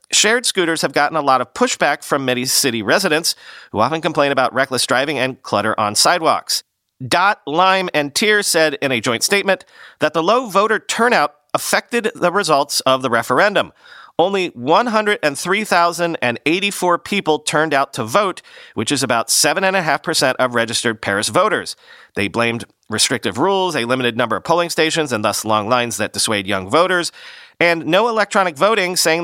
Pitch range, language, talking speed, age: 125-175 Hz, English, 165 wpm, 40-59